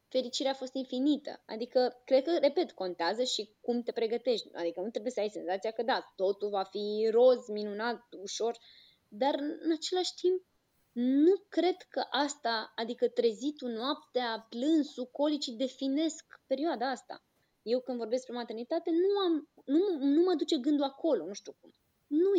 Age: 20-39